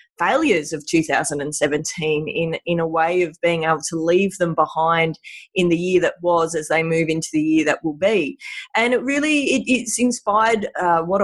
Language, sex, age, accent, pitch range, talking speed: English, female, 30-49, Australian, 170-235 Hz, 190 wpm